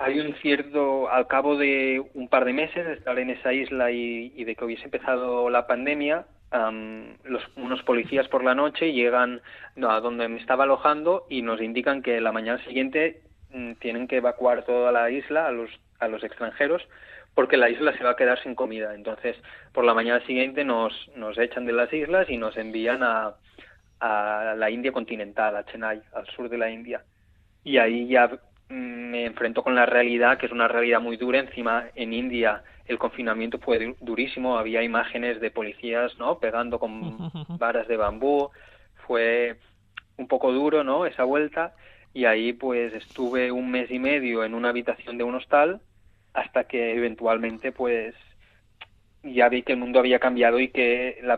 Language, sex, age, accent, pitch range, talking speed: Spanish, male, 20-39, Spanish, 115-130 Hz, 180 wpm